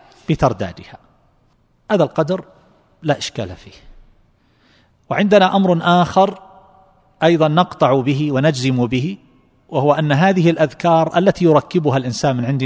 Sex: male